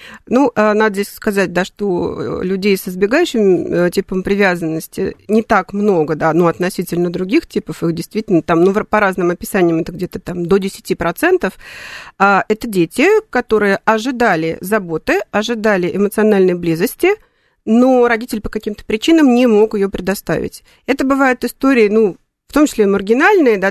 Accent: native